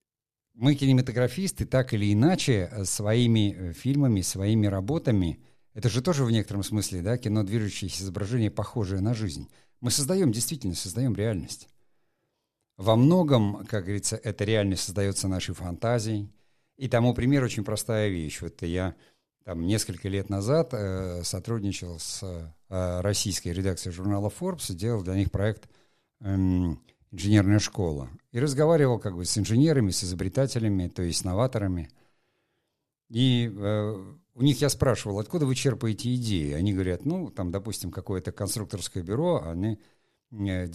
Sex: male